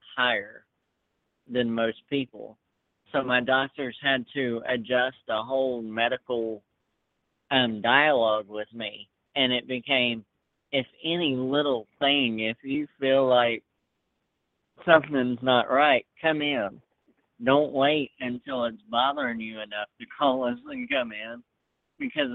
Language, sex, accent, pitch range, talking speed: English, male, American, 115-135 Hz, 125 wpm